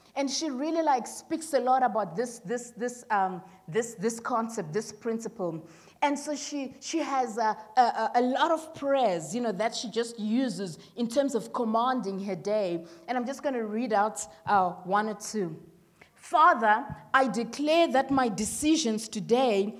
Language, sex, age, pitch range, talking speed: English, female, 30-49, 215-270 Hz, 175 wpm